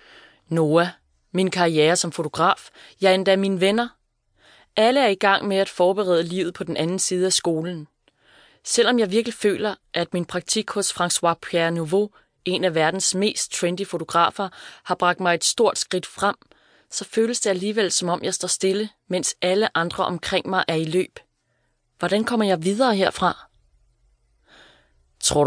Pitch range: 155-200 Hz